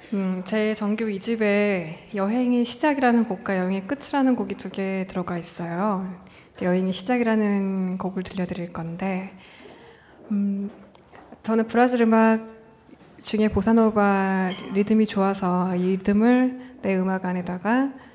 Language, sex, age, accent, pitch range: Korean, female, 20-39, native, 190-225 Hz